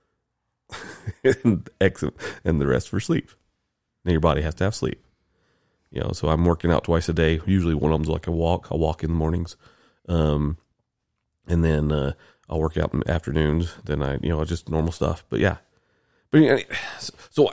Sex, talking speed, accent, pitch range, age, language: male, 185 wpm, American, 80-95 Hz, 30-49, English